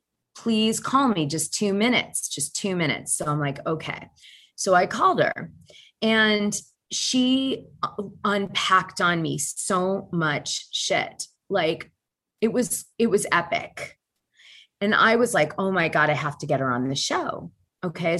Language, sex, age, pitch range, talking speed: English, female, 30-49, 150-195 Hz, 155 wpm